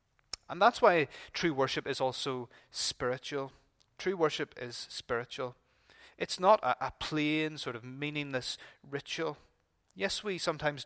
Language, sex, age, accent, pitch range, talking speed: English, male, 30-49, British, 120-155 Hz, 135 wpm